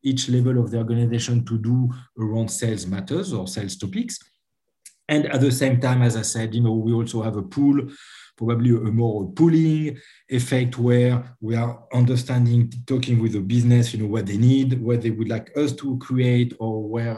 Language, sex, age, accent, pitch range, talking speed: English, male, 50-69, French, 110-125 Hz, 190 wpm